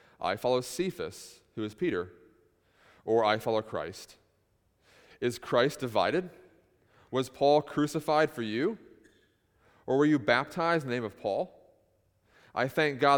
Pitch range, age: 105-140 Hz, 30-49